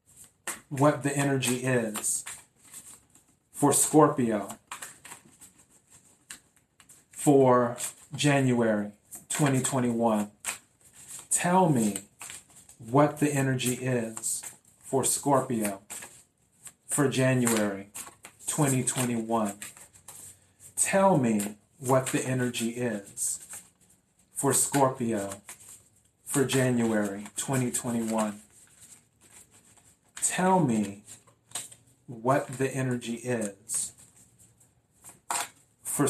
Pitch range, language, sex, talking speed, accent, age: 110-135 Hz, English, male, 65 wpm, American, 40-59